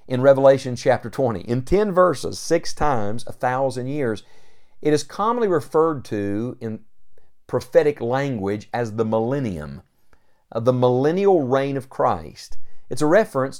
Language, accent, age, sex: English, American, 50-69, male